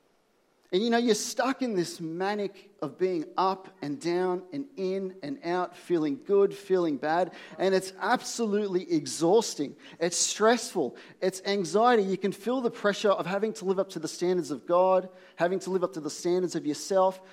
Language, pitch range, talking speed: English, 150-205 Hz, 185 wpm